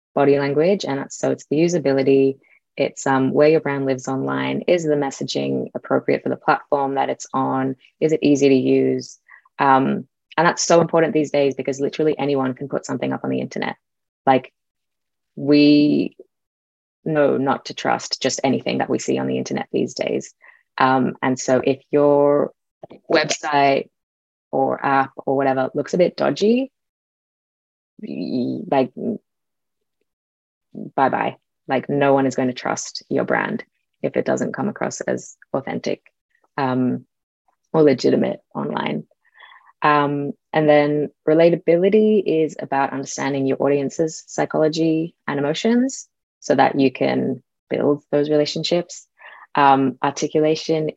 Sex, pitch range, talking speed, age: female, 135-155 Hz, 140 wpm, 20-39